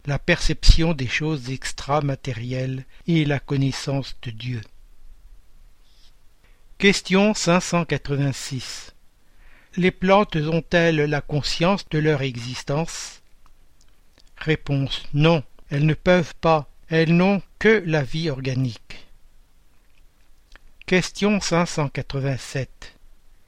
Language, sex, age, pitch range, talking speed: French, male, 60-79, 135-170 Hz, 85 wpm